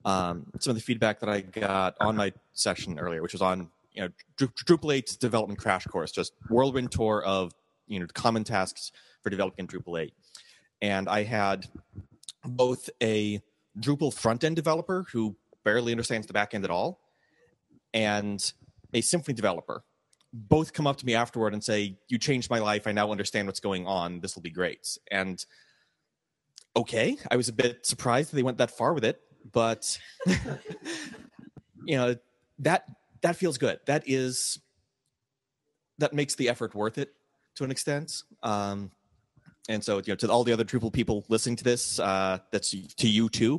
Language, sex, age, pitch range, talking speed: English, male, 30-49, 100-125 Hz, 175 wpm